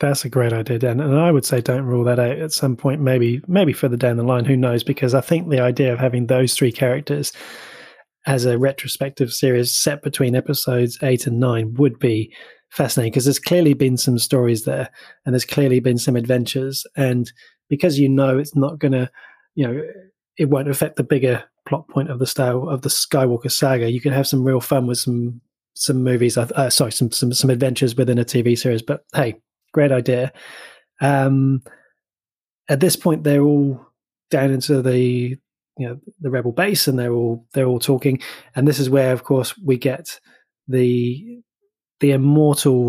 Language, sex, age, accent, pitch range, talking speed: English, male, 20-39, British, 125-140 Hz, 195 wpm